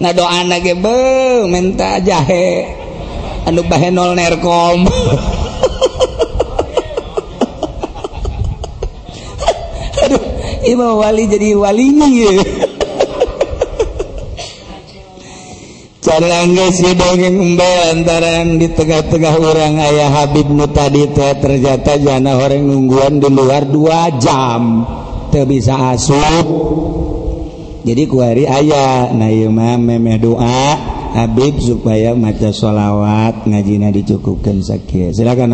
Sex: male